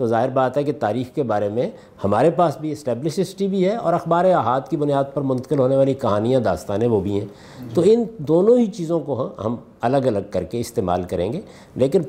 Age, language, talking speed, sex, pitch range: 50-69, Urdu, 225 wpm, male, 125-190 Hz